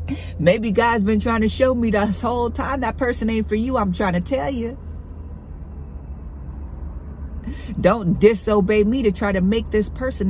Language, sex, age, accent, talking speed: English, female, 50-69, American, 170 wpm